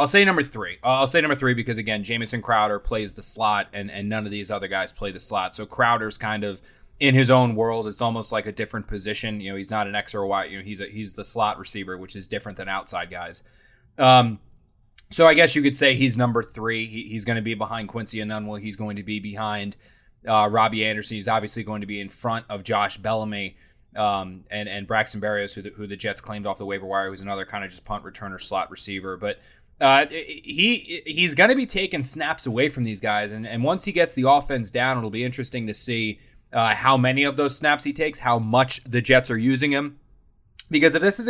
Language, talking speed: English, 245 wpm